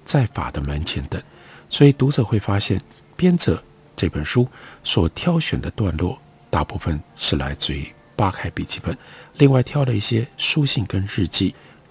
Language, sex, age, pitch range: Chinese, male, 50-69, 85-140 Hz